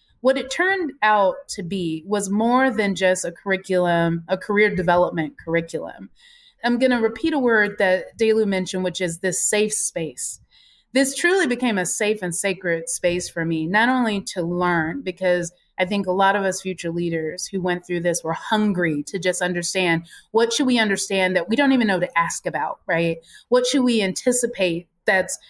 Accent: American